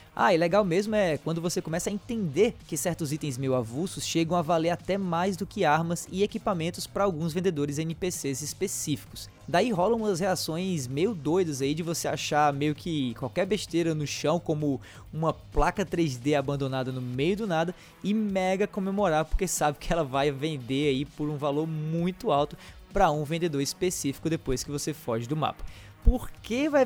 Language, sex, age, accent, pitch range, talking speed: Portuguese, male, 20-39, Brazilian, 145-190 Hz, 185 wpm